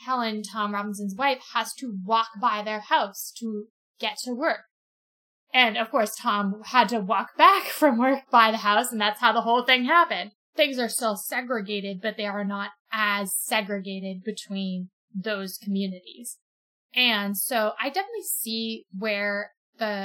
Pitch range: 210-260 Hz